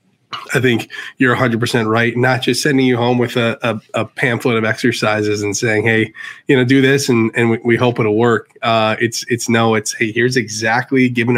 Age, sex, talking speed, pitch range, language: 20-39, male, 215 wpm, 110-125 Hz, English